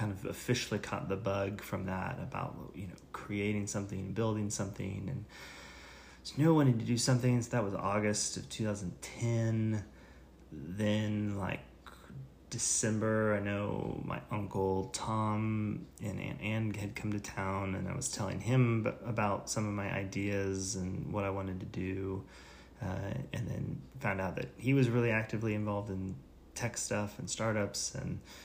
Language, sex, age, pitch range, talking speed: English, male, 30-49, 95-110 Hz, 165 wpm